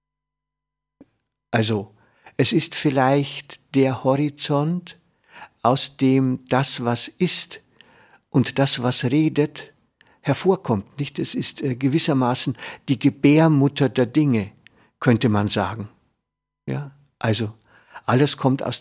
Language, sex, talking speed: German, male, 105 wpm